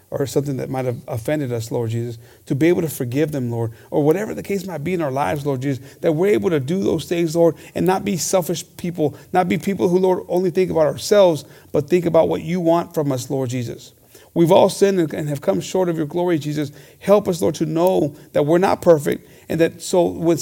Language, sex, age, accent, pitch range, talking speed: English, male, 40-59, American, 150-180 Hz, 245 wpm